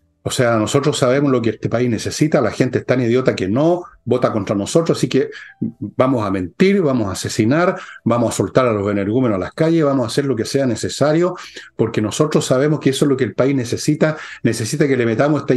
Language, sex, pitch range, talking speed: Spanish, male, 120-155 Hz, 225 wpm